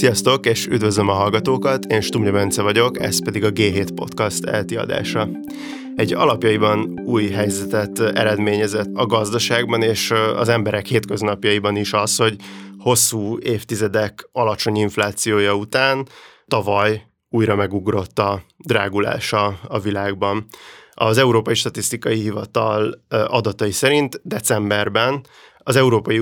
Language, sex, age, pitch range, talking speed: Hungarian, male, 30-49, 105-120 Hz, 115 wpm